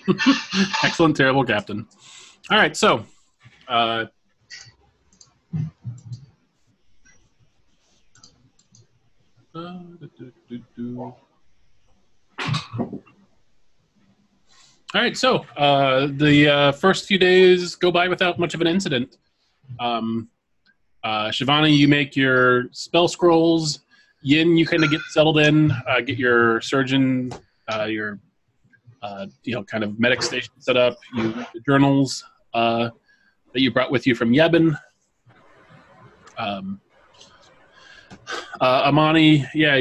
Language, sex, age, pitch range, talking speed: English, male, 30-49, 120-160 Hz, 95 wpm